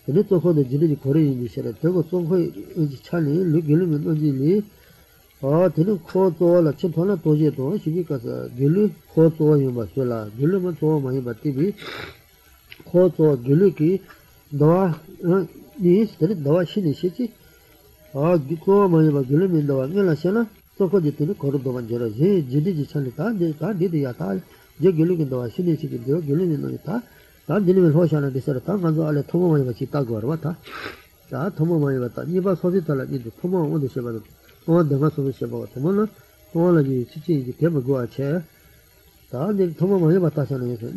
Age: 50-69